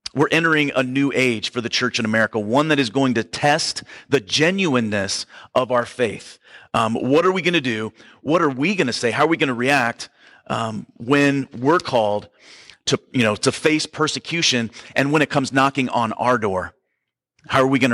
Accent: American